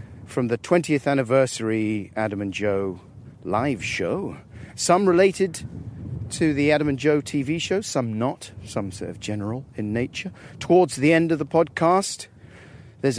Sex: male